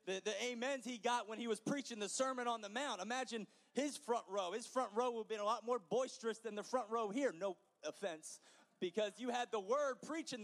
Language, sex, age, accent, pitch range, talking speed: English, male, 30-49, American, 205-250 Hz, 240 wpm